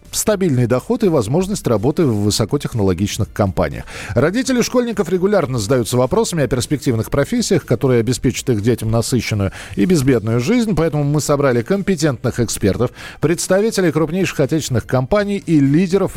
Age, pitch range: 40-59, 125-185 Hz